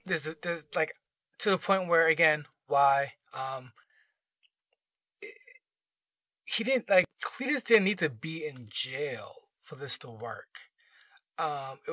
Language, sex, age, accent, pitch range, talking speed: English, male, 30-49, American, 145-210 Hz, 125 wpm